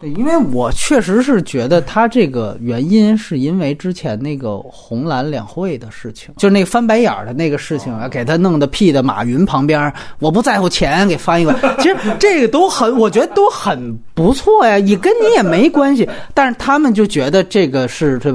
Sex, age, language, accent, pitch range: male, 30-49, Chinese, native, 150-230 Hz